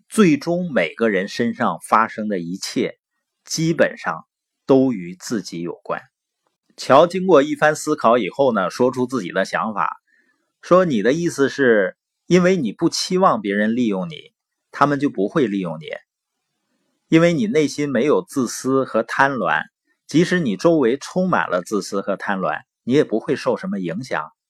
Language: Chinese